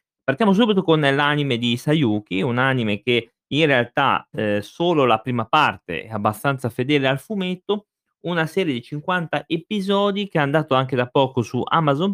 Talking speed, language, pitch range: 170 wpm, Italian, 115-145 Hz